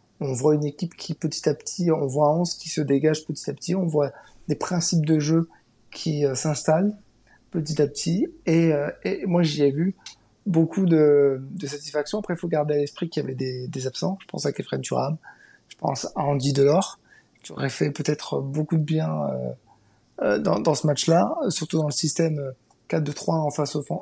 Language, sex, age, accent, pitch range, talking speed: French, male, 30-49, French, 145-175 Hz, 205 wpm